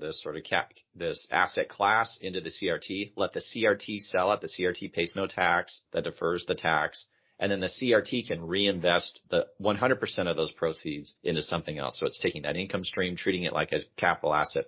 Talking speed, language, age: 200 wpm, English, 40-59